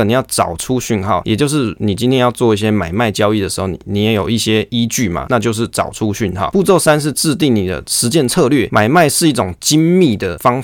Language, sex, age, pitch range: Chinese, male, 20-39, 100-125 Hz